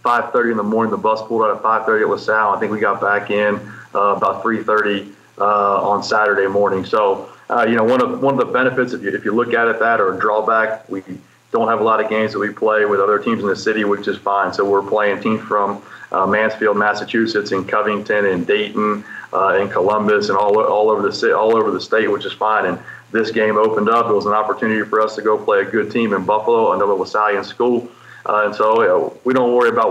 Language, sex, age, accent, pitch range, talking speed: English, male, 30-49, American, 105-120 Hz, 245 wpm